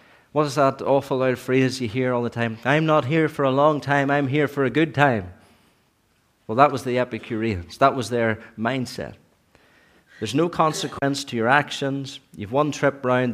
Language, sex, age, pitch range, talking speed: English, male, 40-59, 125-150 Hz, 195 wpm